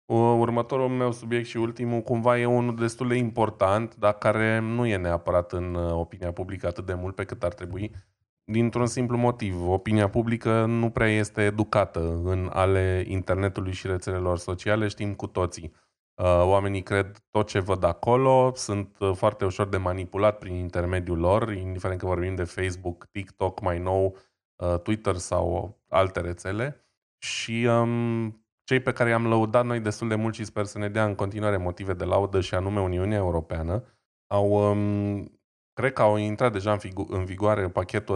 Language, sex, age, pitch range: Romanian, male, 20-39, 95-110 Hz